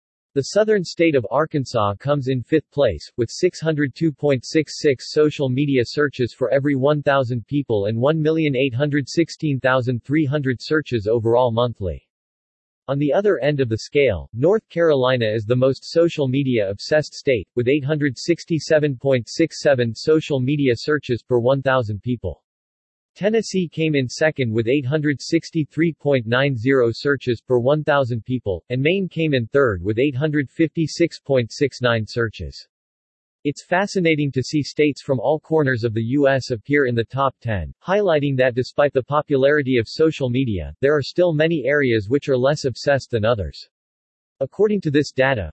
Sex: male